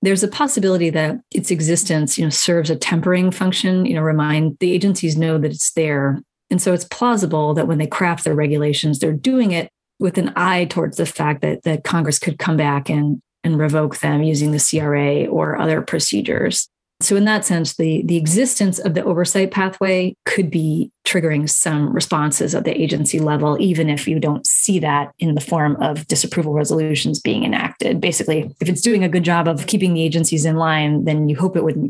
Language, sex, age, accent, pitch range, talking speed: English, female, 30-49, American, 155-190 Hz, 205 wpm